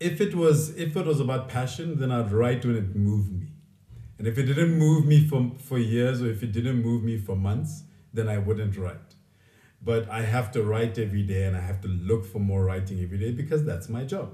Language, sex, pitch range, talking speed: English, male, 100-125 Hz, 240 wpm